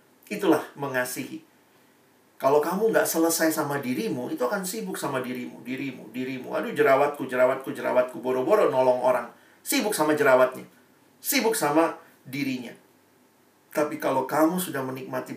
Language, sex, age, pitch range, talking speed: Indonesian, male, 40-59, 130-170 Hz, 130 wpm